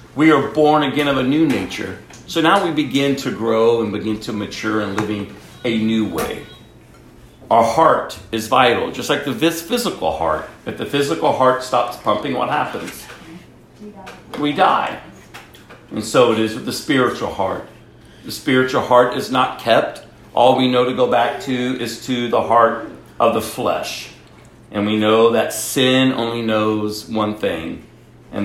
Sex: male